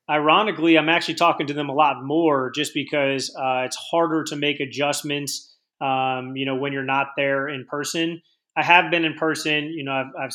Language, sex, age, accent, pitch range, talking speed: English, male, 30-49, American, 135-150 Hz, 205 wpm